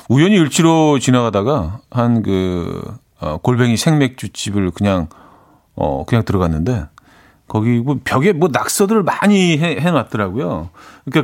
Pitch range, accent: 100-145 Hz, native